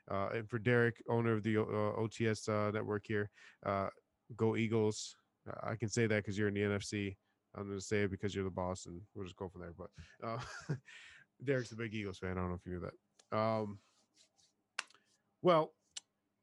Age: 20-39